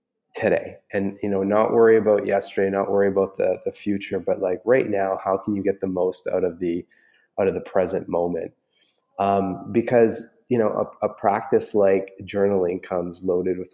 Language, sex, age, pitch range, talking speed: English, male, 20-39, 95-115 Hz, 190 wpm